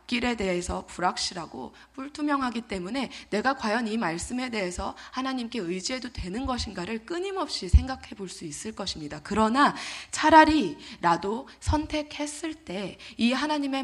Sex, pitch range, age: female, 185-270 Hz, 20-39